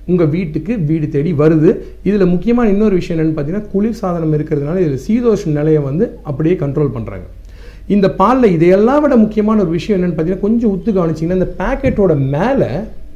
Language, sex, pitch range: Tamil, male, 155-215 Hz